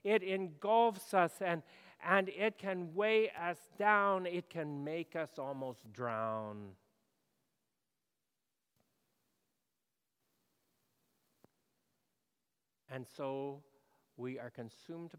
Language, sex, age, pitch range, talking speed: English, male, 50-69, 110-175 Hz, 85 wpm